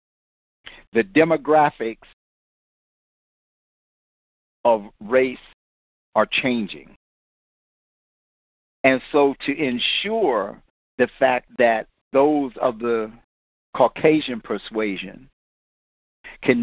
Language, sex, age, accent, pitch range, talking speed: English, male, 50-69, American, 115-155 Hz, 70 wpm